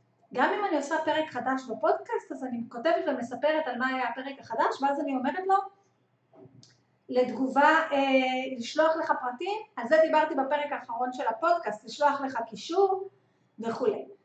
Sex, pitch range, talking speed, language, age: female, 240-320 Hz, 150 wpm, Hebrew, 30-49